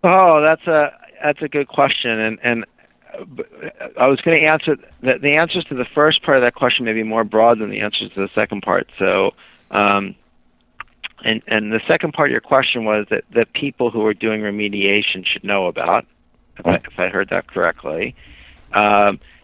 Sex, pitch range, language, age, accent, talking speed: male, 95-120 Hz, English, 50-69, American, 200 wpm